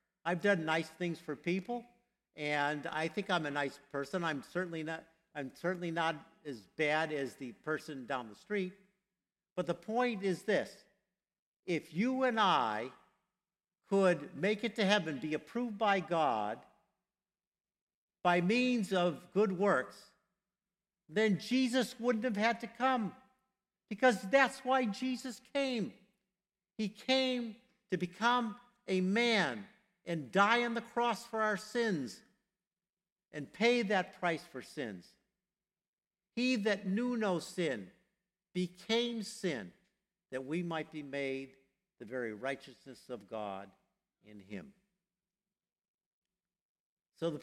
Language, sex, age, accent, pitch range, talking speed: English, male, 60-79, American, 165-210 Hz, 130 wpm